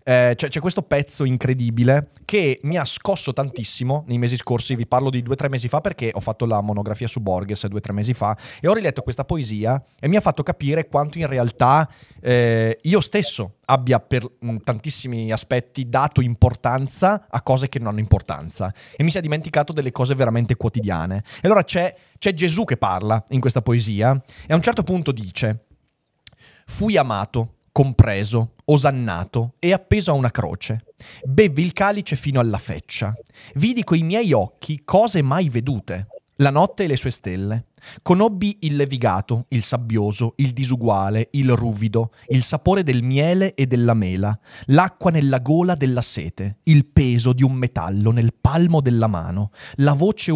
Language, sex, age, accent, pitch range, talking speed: Italian, male, 30-49, native, 115-155 Hz, 170 wpm